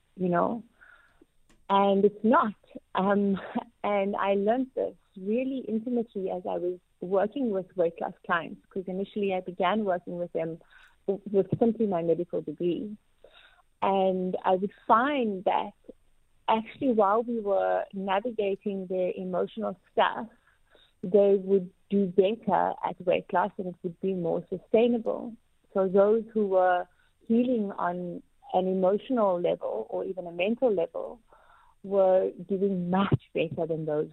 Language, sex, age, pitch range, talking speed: English, female, 30-49, 185-230 Hz, 135 wpm